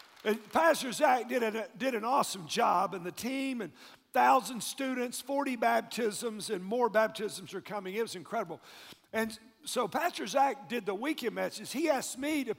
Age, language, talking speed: 50-69, English, 180 wpm